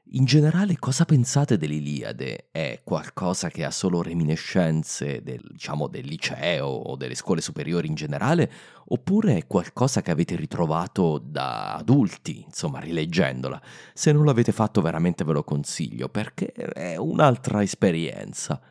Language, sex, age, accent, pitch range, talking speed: Italian, male, 30-49, native, 85-140 Hz, 135 wpm